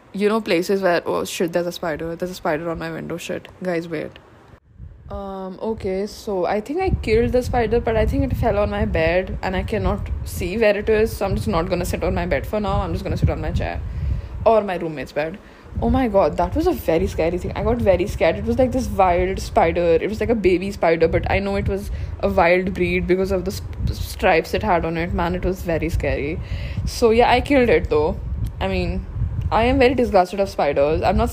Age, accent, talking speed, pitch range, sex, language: 20-39, Indian, 240 wpm, 170-230 Hz, female, English